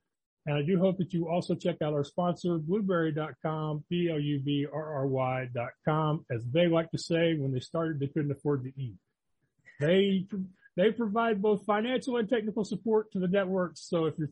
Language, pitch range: English, 155-200 Hz